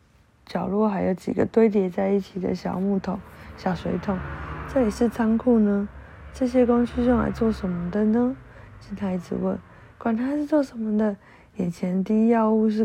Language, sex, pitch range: Chinese, female, 180-215 Hz